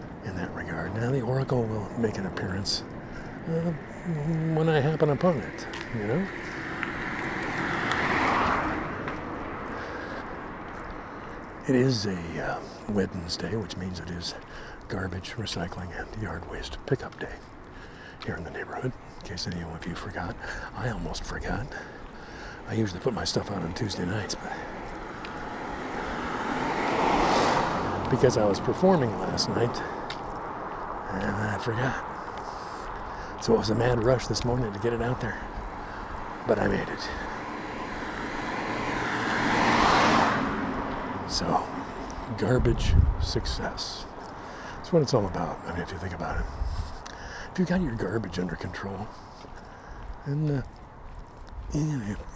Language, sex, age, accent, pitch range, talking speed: English, male, 60-79, American, 90-135 Hz, 125 wpm